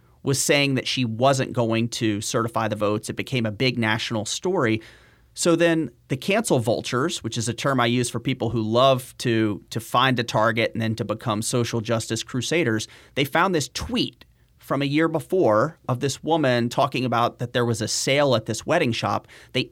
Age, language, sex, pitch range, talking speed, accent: 40-59, English, male, 115-150 Hz, 200 wpm, American